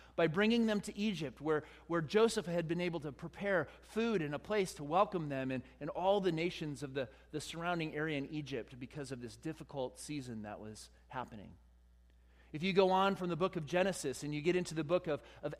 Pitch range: 150-215 Hz